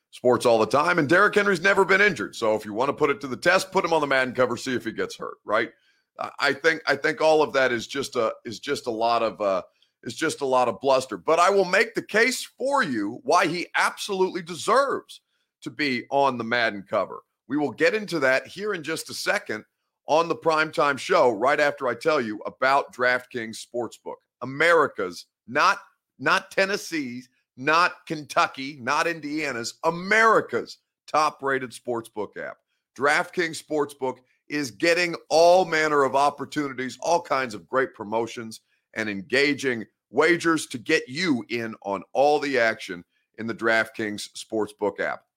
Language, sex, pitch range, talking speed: English, male, 115-170 Hz, 180 wpm